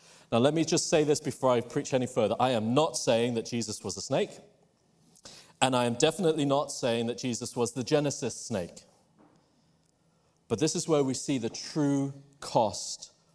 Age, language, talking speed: 30-49, English, 185 wpm